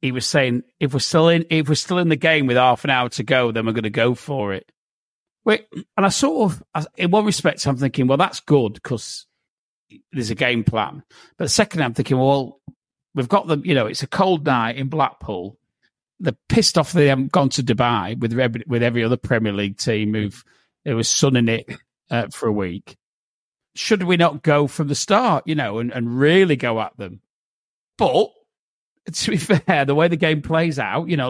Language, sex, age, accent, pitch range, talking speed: English, male, 40-59, British, 130-175 Hz, 215 wpm